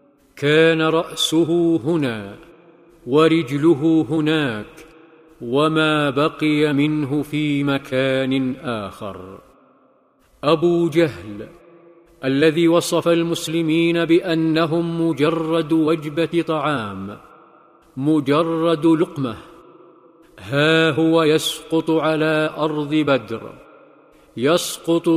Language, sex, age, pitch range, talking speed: Arabic, male, 50-69, 145-165 Hz, 70 wpm